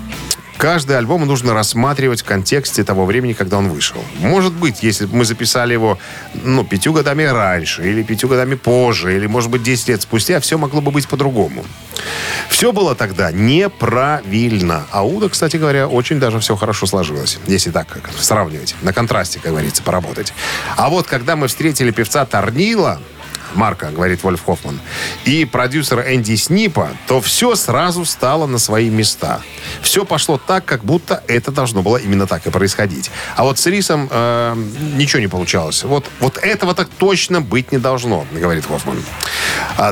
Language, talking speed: Russian, 165 wpm